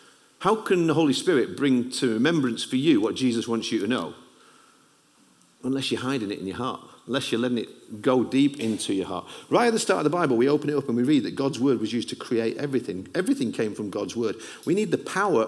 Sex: male